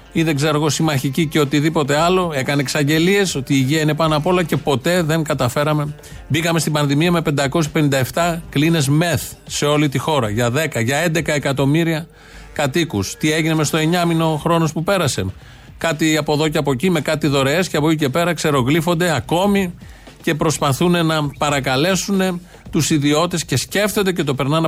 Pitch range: 145-170 Hz